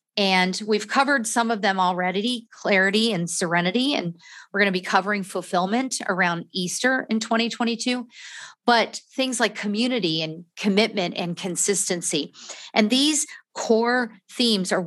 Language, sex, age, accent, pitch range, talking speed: English, female, 40-59, American, 185-230 Hz, 135 wpm